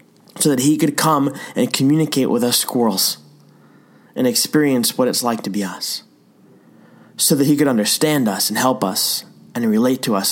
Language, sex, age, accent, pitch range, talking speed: English, male, 20-39, American, 95-135 Hz, 180 wpm